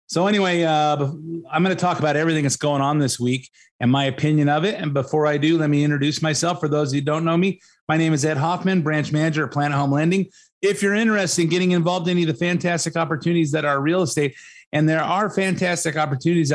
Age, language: 30-49, English